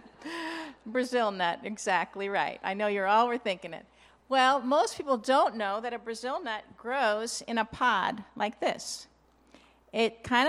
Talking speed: 155 wpm